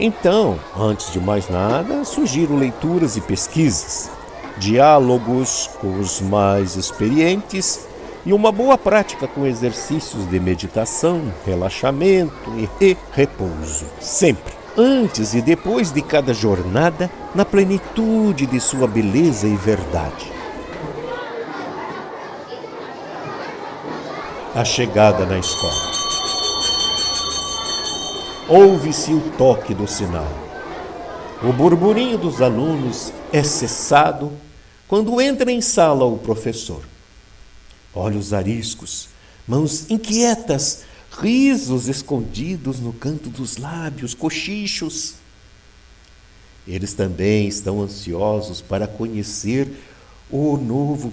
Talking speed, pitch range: 95 wpm, 100-170 Hz